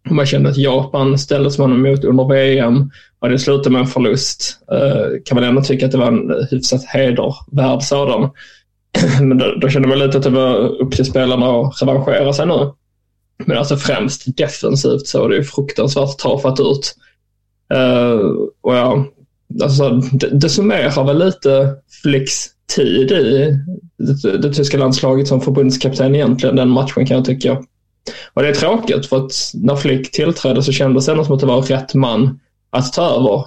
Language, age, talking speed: Swedish, 20-39, 175 wpm